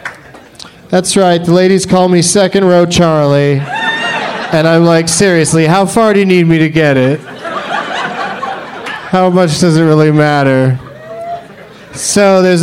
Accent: American